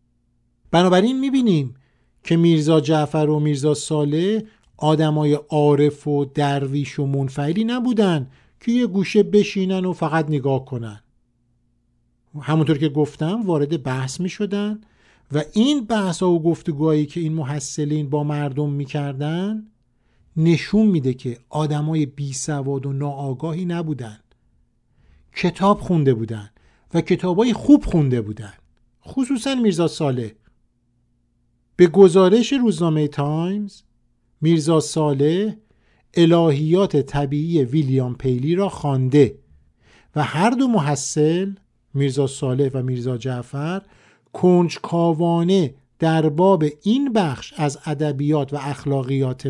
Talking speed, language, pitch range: 110 wpm, Persian, 135-180 Hz